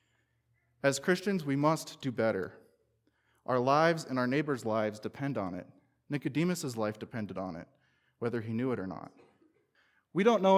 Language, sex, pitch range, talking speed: English, male, 120-160 Hz, 165 wpm